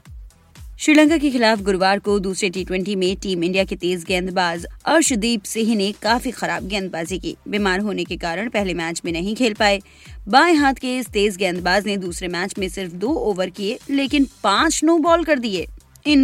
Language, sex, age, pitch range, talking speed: Hindi, female, 20-39, 190-255 Hz, 190 wpm